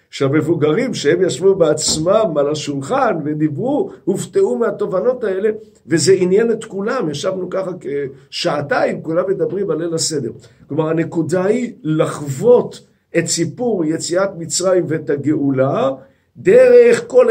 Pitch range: 150-230 Hz